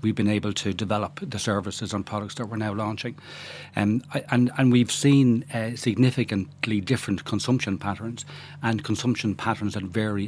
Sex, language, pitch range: male, English, 100-120 Hz